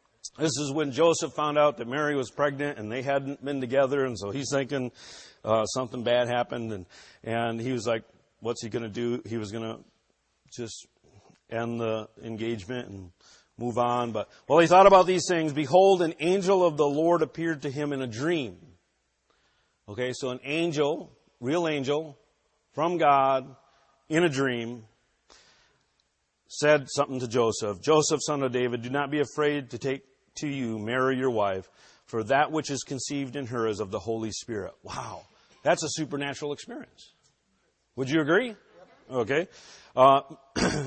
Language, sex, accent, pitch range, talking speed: English, male, American, 120-155 Hz, 170 wpm